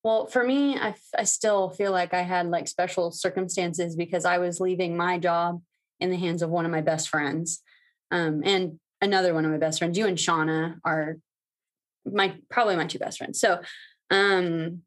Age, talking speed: 20-39, 195 wpm